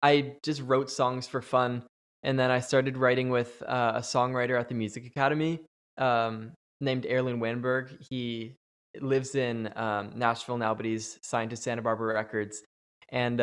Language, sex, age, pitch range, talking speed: English, male, 20-39, 115-135 Hz, 165 wpm